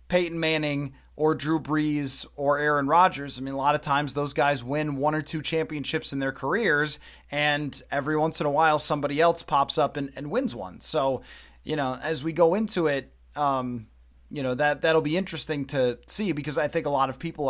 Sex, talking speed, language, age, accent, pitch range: male, 215 wpm, English, 30-49, American, 145-175 Hz